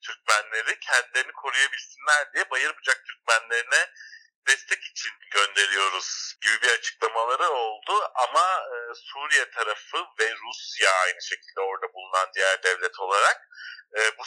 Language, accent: Turkish, native